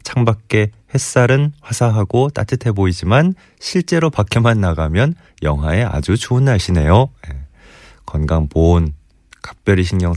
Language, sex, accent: Korean, male, native